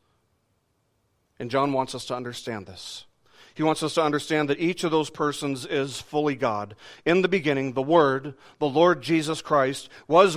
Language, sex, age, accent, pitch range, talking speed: English, male, 40-59, American, 115-150 Hz, 175 wpm